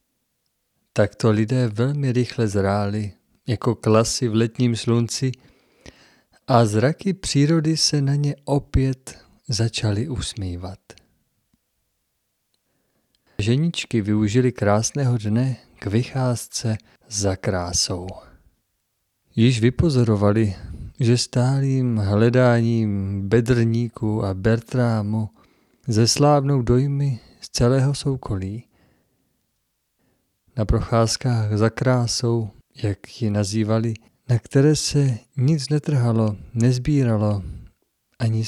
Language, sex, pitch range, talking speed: Czech, male, 105-130 Hz, 85 wpm